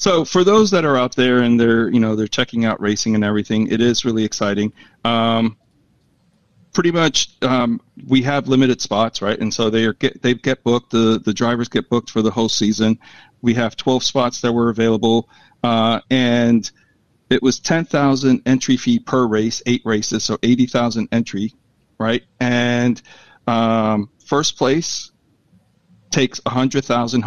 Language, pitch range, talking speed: English, 115-130 Hz, 165 wpm